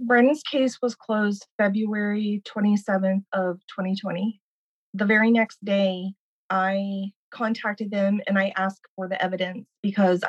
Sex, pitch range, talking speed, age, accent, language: female, 185-210 Hz, 130 wpm, 30-49, American, English